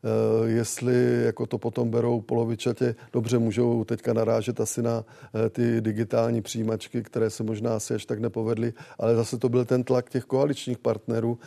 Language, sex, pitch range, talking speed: Czech, male, 115-125 Hz, 160 wpm